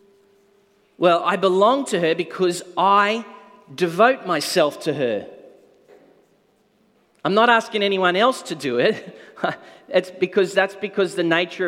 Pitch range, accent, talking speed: 150-200 Hz, Australian, 130 wpm